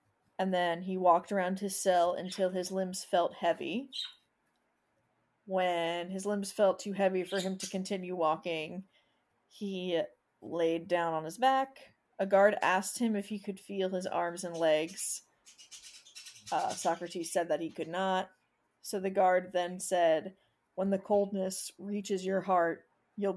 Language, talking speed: English, 155 wpm